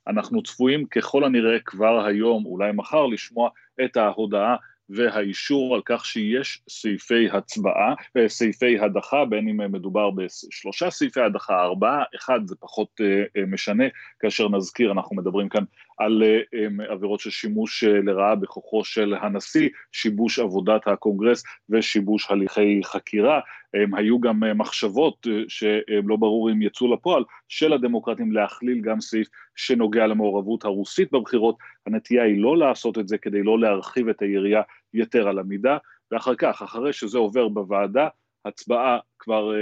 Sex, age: male, 30-49